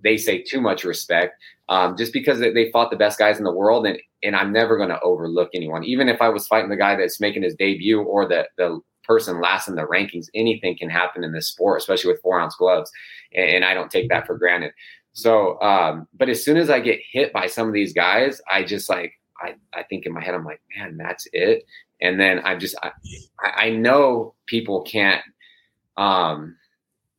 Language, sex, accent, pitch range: English, male, American, 90-140 Hz